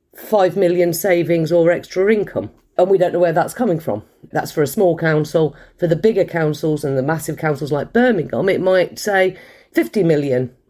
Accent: British